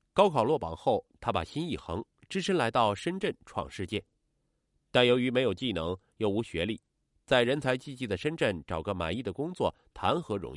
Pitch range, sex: 95-140 Hz, male